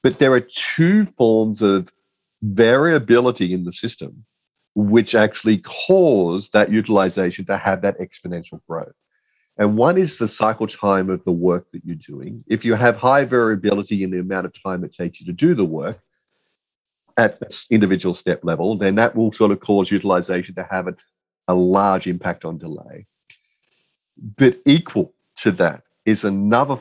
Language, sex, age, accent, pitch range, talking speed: English, male, 40-59, Australian, 95-125 Hz, 165 wpm